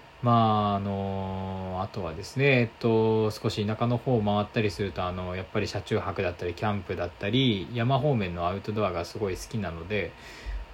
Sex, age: male, 20-39